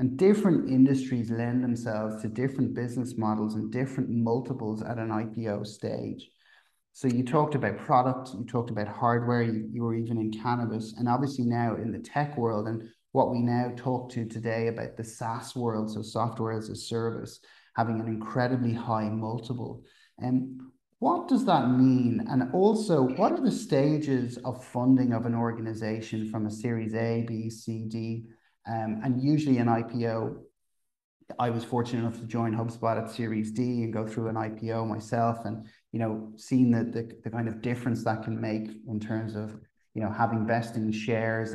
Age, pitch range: 30-49, 110-130 Hz